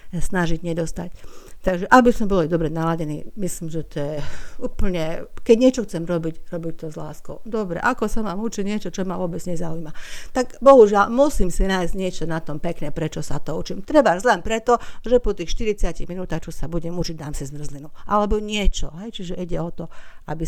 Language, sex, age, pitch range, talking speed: Slovak, female, 50-69, 160-210 Hz, 195 wpm